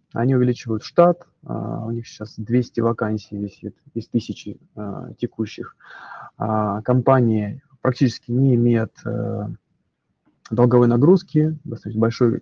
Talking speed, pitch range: 90 wpm, 110-130 Hz